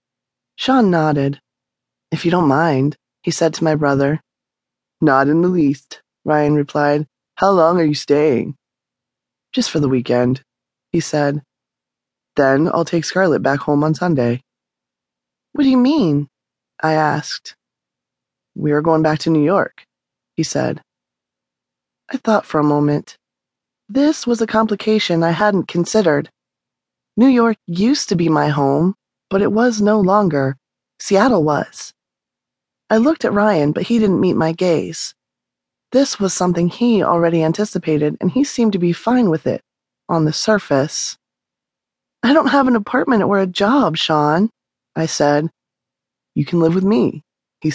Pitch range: 135-195 Hz